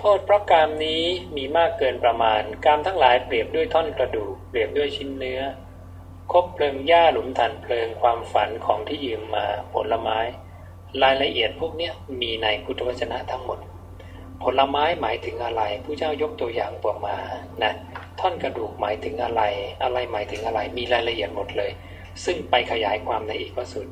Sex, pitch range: male, 90-150 Hz